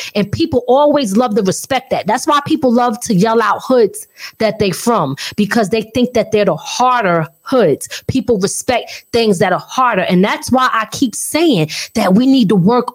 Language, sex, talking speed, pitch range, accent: English, female, 200 wpm, 210-300 Hz, American